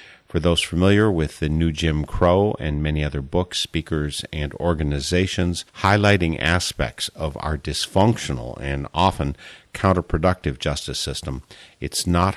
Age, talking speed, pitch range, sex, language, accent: 50-69, 130 wpm, 75-95 Hz, male, English, American